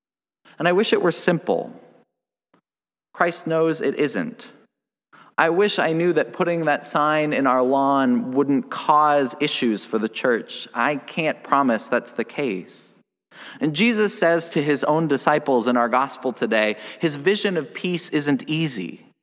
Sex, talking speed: male, 155 wpm